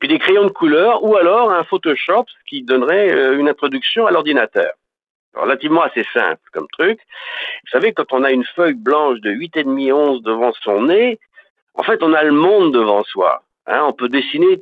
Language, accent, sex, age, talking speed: French, French, male, 50-69, 190 wpm